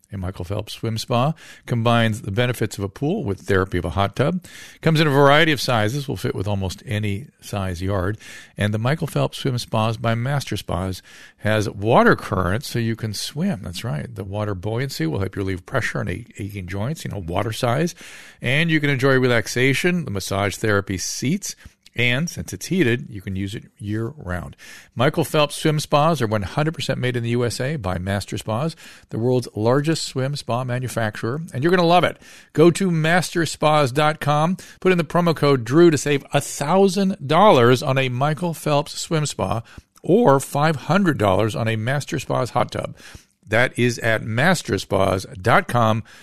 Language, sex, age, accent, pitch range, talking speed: English, male, 50-69, American, 105-150 Hz, 175 wpm